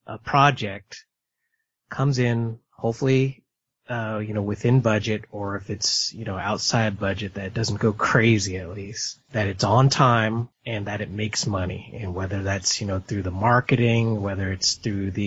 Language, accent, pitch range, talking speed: English, American, 100-125 Hz, 175 wpm